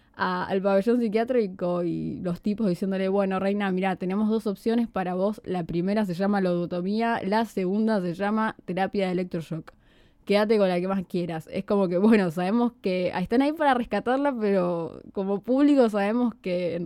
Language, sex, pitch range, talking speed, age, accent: Spanish, female, 185-240 Hz, 180 wpm, 10-29, Argentinian